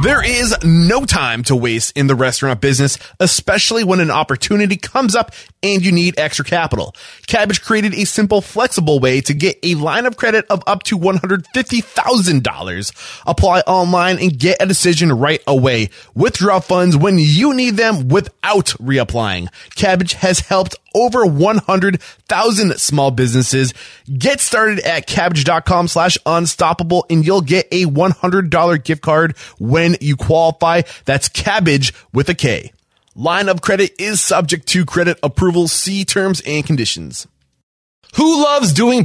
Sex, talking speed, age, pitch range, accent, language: male, 155 wpm, 20-39, 140-195 Hz, American, English